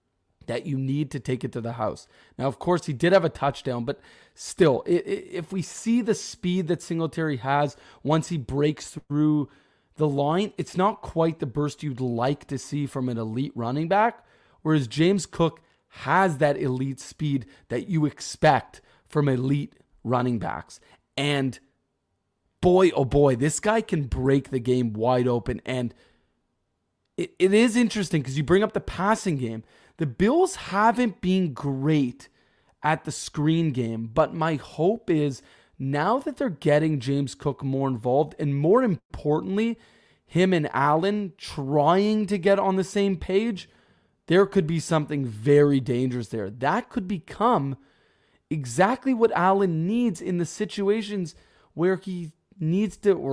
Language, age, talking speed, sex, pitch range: English, 30-49, 160 wpm, male, 135-190 Hz